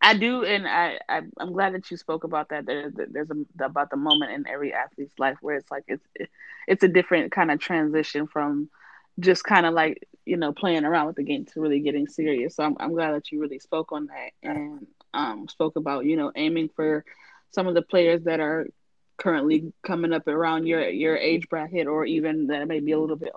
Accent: American